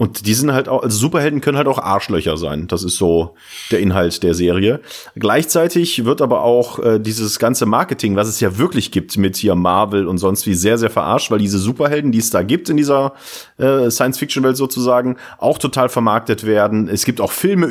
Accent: German